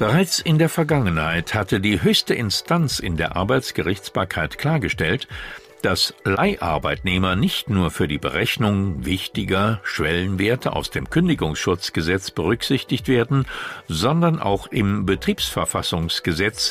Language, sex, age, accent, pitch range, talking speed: German, male, 60-79, German, 90-150 Hz, 110 wpm